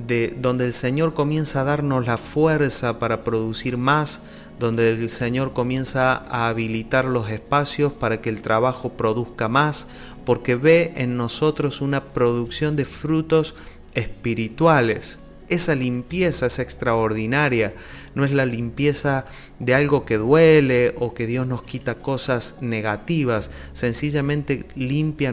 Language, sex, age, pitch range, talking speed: Spanish, male, 30-49, 115-145 Hz, 130 wpm